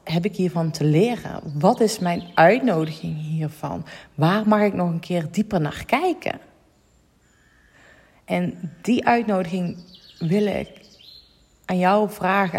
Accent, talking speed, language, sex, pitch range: Dutch, 130 wpm, Dutch, female, 165-195 Hz